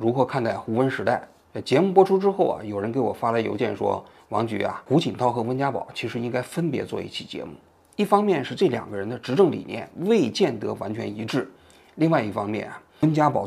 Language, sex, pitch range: Chinese, male, 115-170 Hz